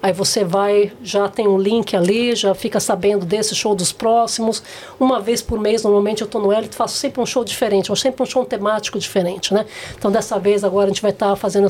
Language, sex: Portuguese, female